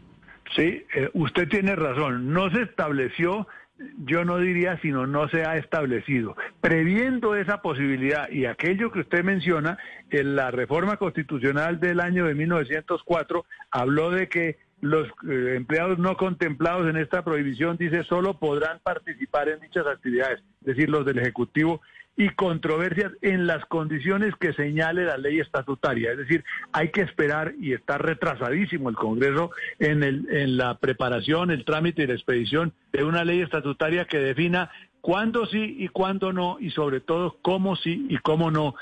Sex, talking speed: male, 155 wpm